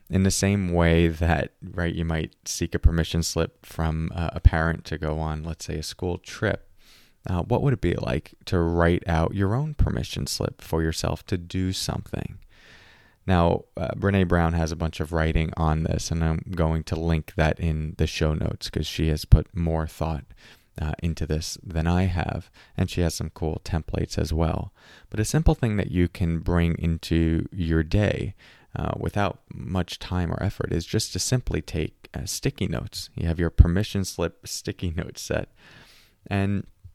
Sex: male